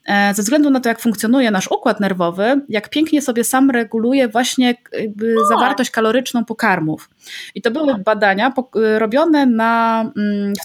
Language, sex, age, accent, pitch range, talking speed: Polish, female, 20-39, native, 205-260 Hz, 145 wpm